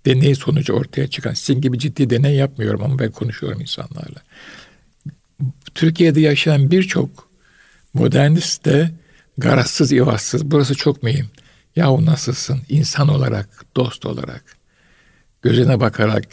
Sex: male